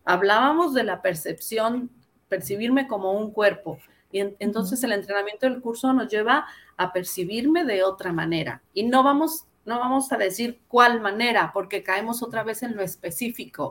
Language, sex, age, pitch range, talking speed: Spanish, female, 40-59, 185-235 Hz, 160 wpm